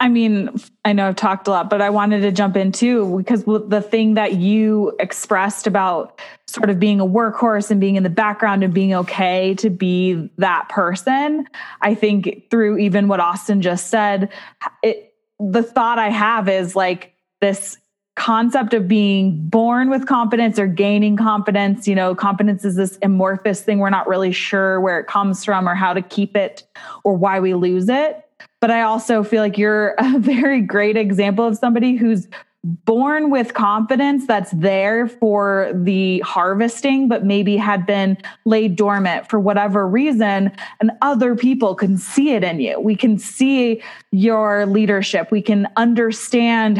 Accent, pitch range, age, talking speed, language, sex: American, 195-230 Hz, 20-39, 175 wpm, English, female